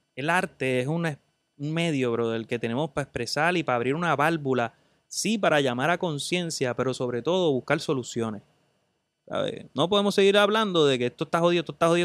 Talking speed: 195 wpm